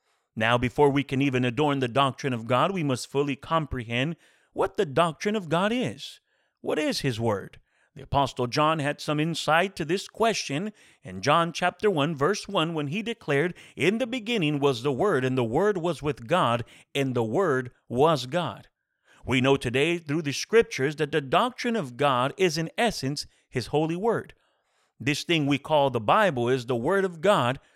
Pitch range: 135-200 Hz